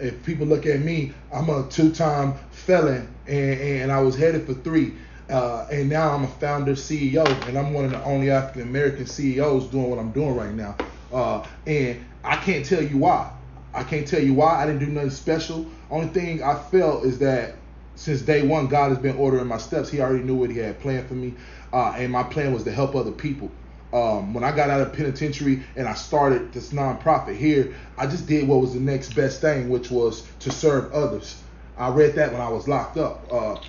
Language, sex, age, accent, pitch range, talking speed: English, male, 20-39, American, 130-150 Hz, 215 wpm